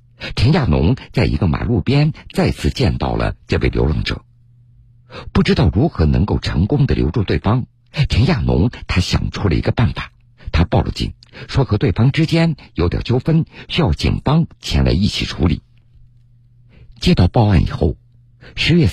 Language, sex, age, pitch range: Chinese, male, 50-69, 95-120 Hz